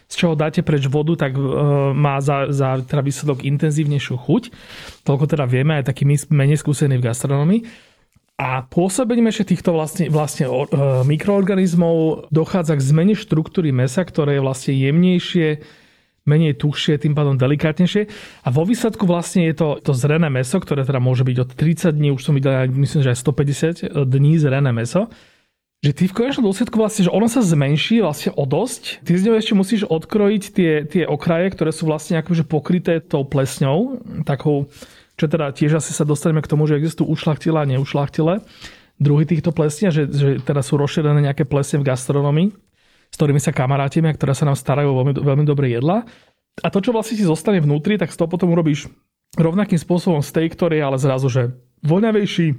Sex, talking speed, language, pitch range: male, 180 wpm, Slovak, 140-175 Hz